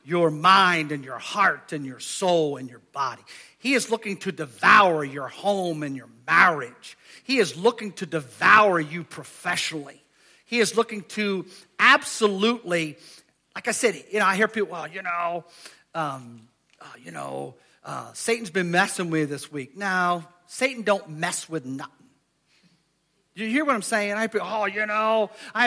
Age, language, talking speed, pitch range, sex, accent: 50-69, English, 170 wpm, 170-220 Hz, male, American